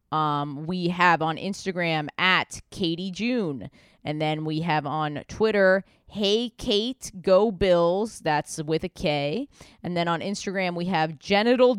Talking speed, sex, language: 150 wpm, female, English